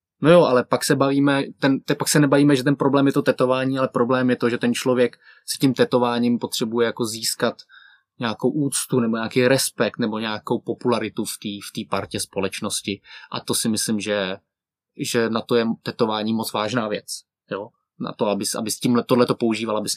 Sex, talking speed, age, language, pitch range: male, 195 wpm, 20-39, Czech, 115-140 Hz